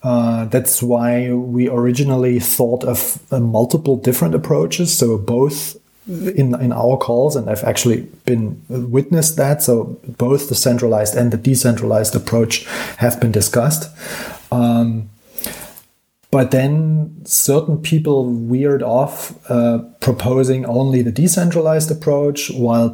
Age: 30-49